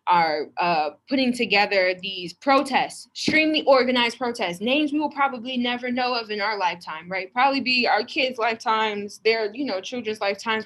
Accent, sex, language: American, female, English